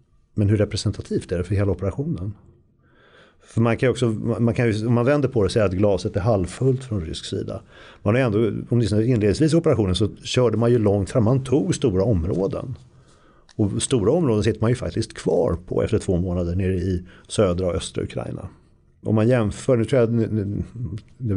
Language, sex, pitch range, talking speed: Swedish, male, 95-120 Hz, 205 wpm